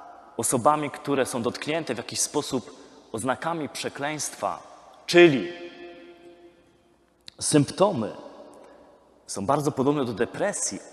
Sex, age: male, 30-49